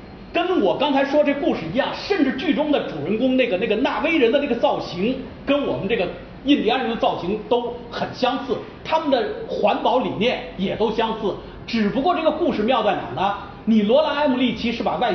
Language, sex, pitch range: Chinese, male, 195-285 Hz